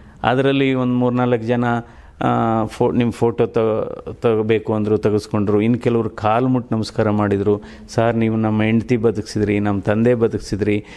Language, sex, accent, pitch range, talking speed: Kannada, male, native, 110-140 Hz, 140 wpm